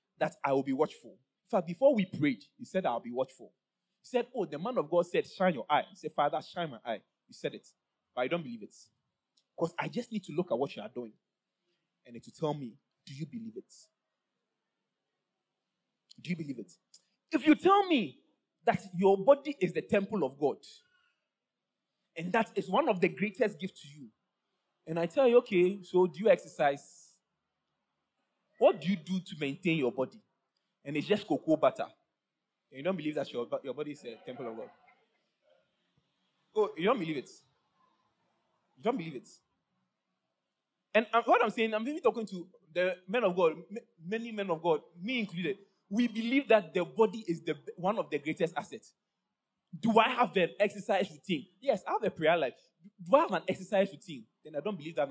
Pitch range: 165-220 Hz